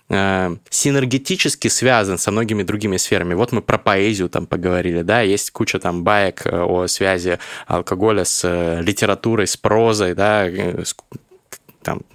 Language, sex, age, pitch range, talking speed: Russian, male, 20-39, 95-120 Hz, 130 wpm